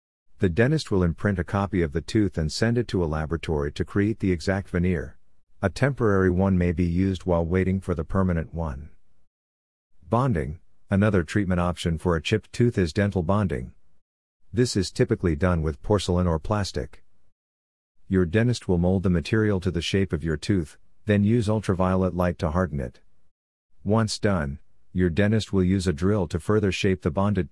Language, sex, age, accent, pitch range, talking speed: English, male, 50-69, American, 80-105 Hz, 180 wpm